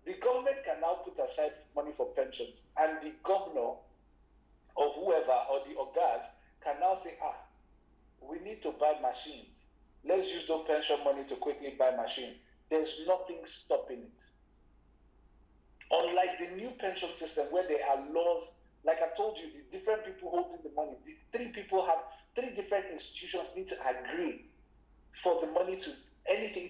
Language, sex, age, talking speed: English, male, 50-69, 165 wpm